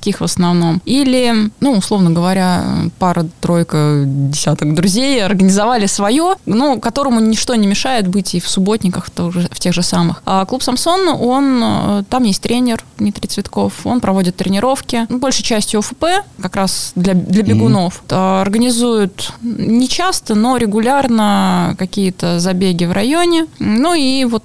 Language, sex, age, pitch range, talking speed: Russian, female, 20-39, 185-235 Hz, 140 wpm